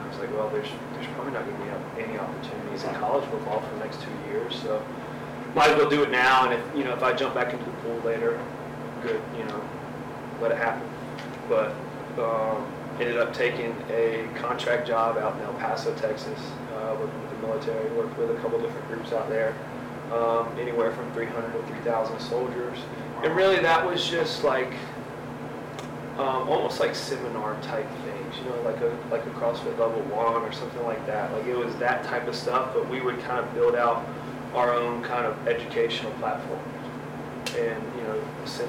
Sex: male